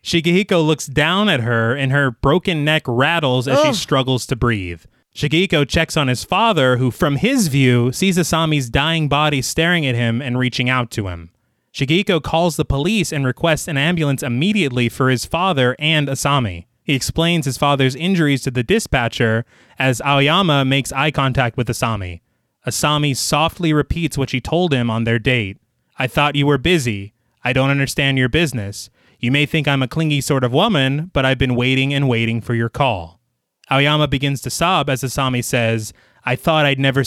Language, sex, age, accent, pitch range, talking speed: English, male, 20-39, American, 125-155 Hz, 185 wpm